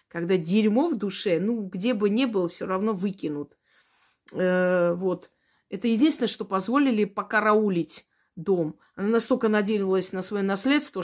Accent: native